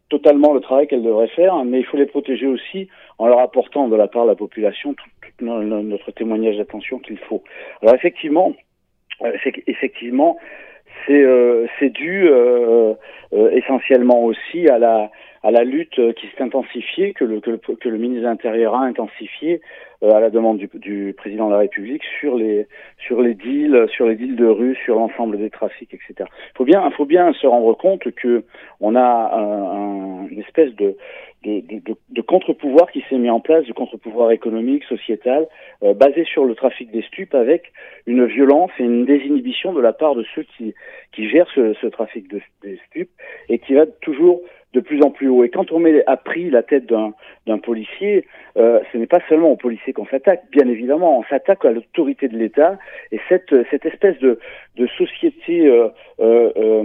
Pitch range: 115-180 Hz